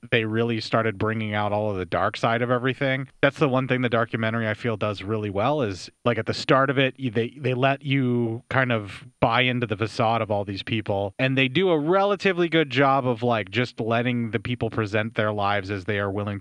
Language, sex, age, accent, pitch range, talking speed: English, male, 30-49, American, 105-130 Hz, 235 wpm